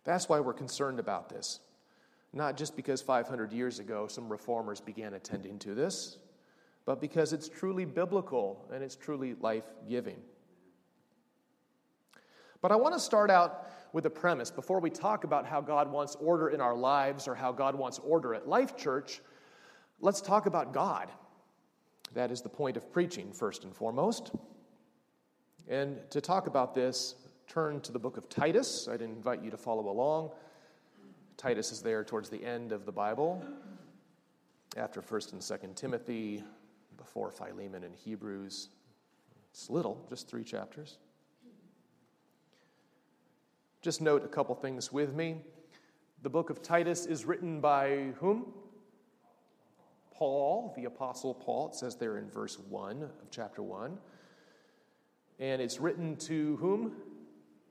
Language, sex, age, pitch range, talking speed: English, male, 40-59, 120-170 Hz, 150 wpm